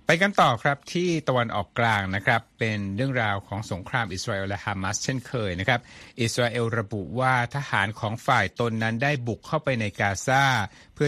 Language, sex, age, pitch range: Thai, male, 60-79, 105-130 Hz